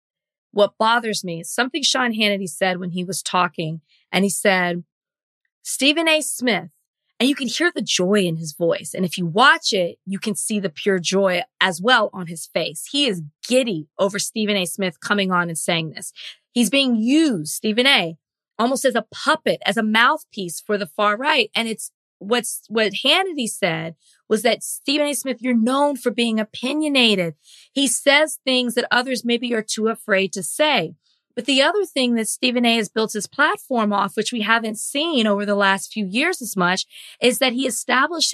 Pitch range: 195-255 Hz